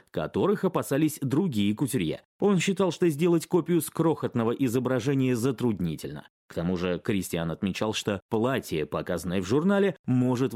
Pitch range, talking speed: 110-175 Hz, 135 wpm